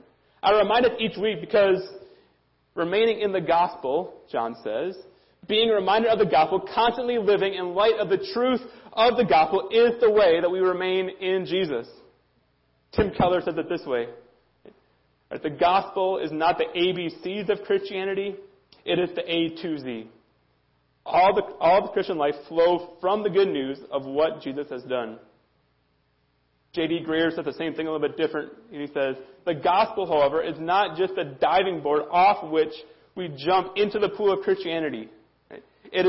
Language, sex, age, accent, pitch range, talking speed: English, male, 30-49, American, 150-205 Hz, 175 wpm